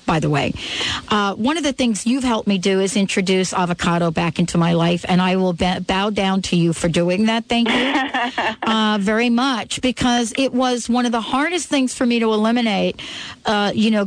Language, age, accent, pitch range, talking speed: English, 50-69, American, 185-240 Hz, 215 wpm